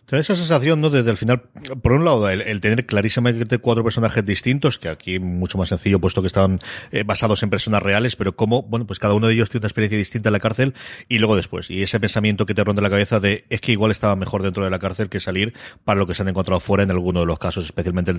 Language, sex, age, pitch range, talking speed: Spanish, male, 30-49, 100-130 Hz, 270 wpm